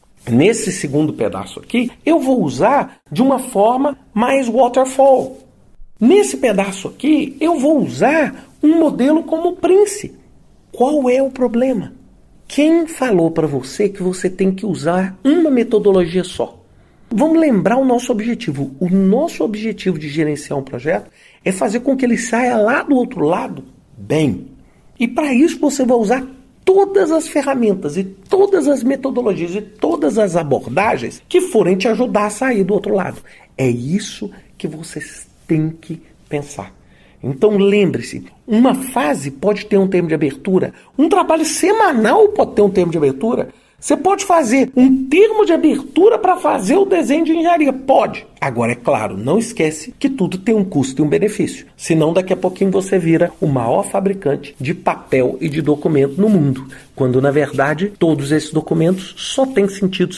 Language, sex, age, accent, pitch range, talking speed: Portuguese, male, 50-69, Brazilian, 160-265 Hz, 165 wpm